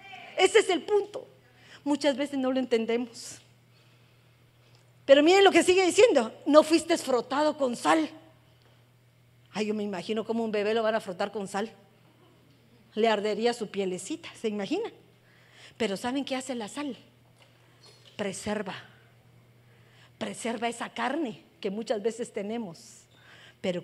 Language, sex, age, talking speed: Spanish, female, 40-59, 135 wpm